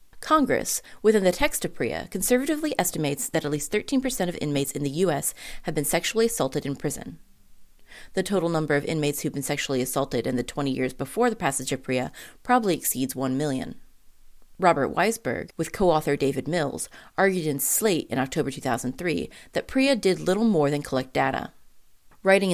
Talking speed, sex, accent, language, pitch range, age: 175 wpm, female, American, English, 135-190 Hz, 30-49